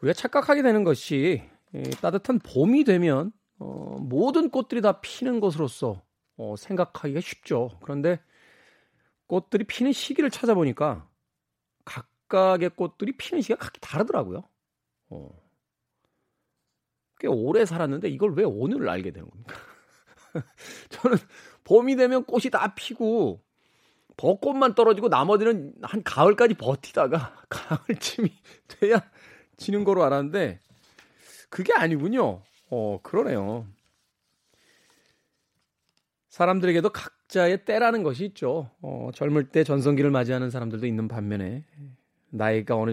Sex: male